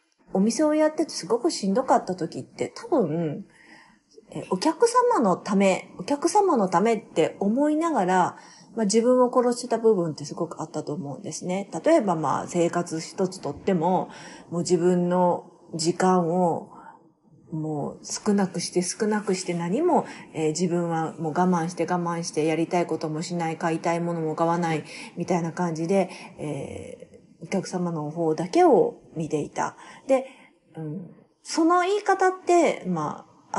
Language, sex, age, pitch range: Japanese, female, 40-59, 170-260 Hz